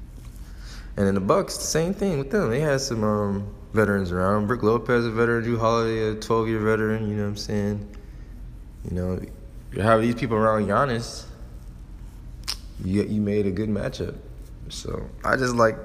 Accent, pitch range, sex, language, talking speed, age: American, 90-110 Hz, male, English, 175 wpm, 20-39